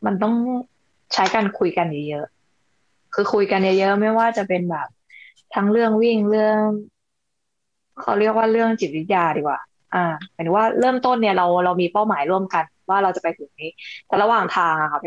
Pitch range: 170-225 Hz